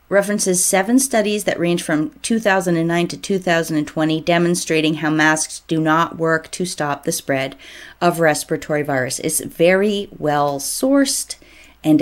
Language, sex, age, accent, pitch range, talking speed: English, female, 30-49, American, 155-235 Hz, 135 wpm